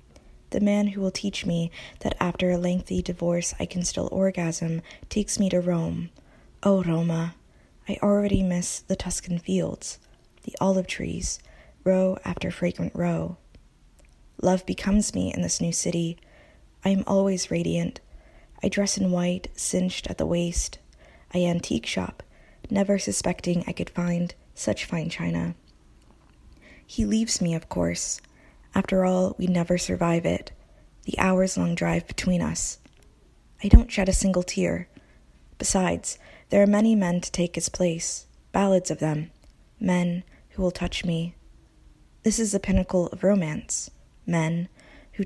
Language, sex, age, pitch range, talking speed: English, female, 20-39, 170-190 Hz, 145 wpm